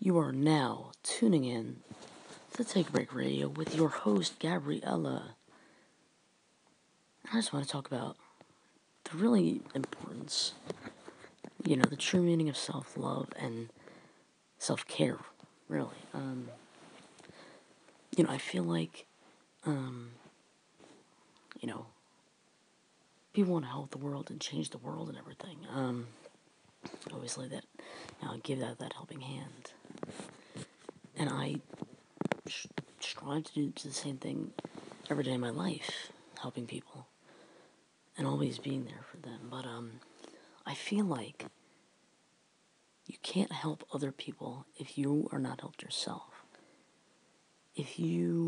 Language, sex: English, female